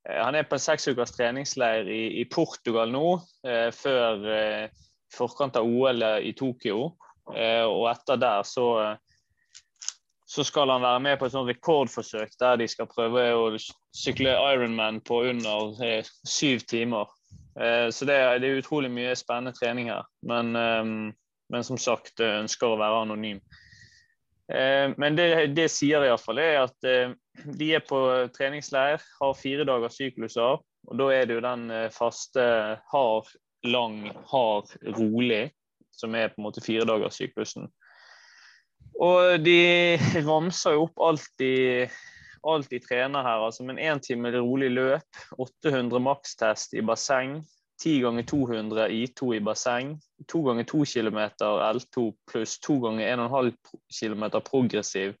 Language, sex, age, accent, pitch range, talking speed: English, male, 20-39, Swedish, 115-135 Hz, 150 wpm